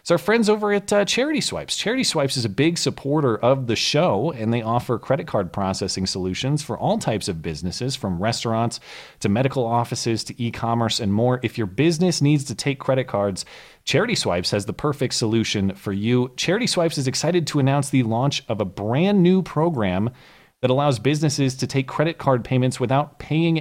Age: 30-49